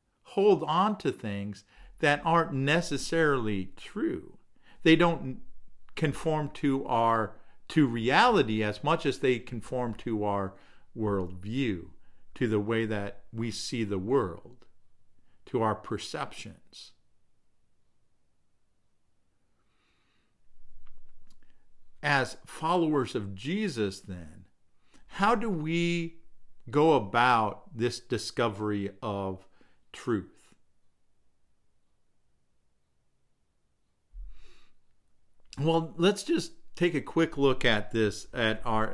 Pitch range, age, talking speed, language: 100-145 Hz, 50-69, 90 wpm, English